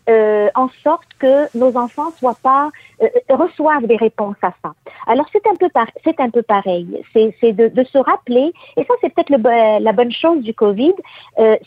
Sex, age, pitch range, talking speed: female, 50-69, 220-275 Hz, 205 wpm